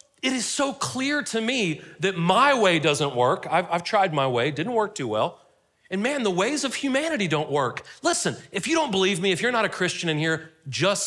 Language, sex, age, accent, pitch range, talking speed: English, male, 40-59, American, 155-225 Hz, 230 wpm